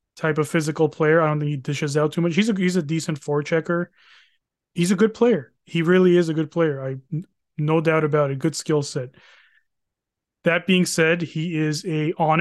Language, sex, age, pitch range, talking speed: English, male, 20-39, 150-170 Hz, 215 wpm